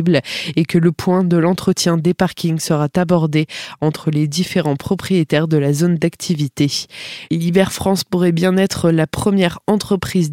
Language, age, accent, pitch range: French, 20-39, French, 160-180 Hz